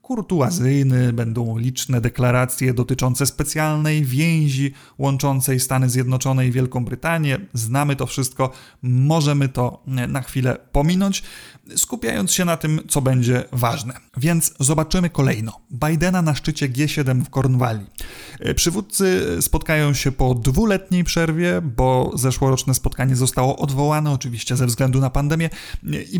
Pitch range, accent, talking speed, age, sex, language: 125-155 Hz, native, 125 wpm, 30-49, male, Polish